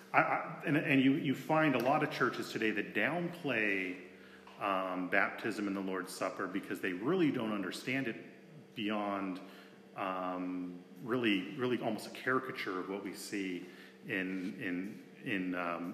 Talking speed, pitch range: 150 wpm, 95-130 Hz